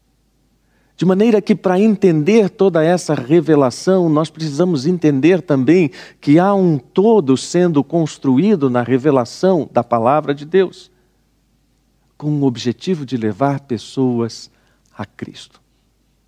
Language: Portuguese